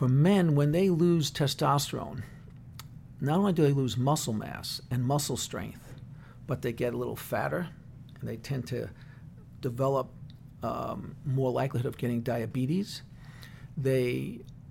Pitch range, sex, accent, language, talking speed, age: 125-150 Hz, male, American, English, 140 wpm, 50-69